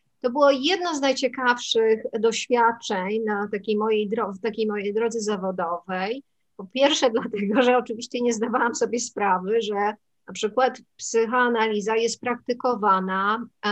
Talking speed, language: 130 wpm, Polish